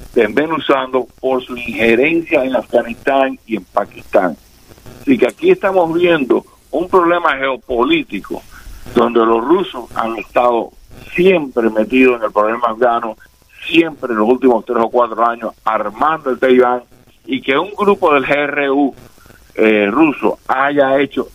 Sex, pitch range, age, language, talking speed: male, 115-135 Hz, 50-69, English, 140 wpm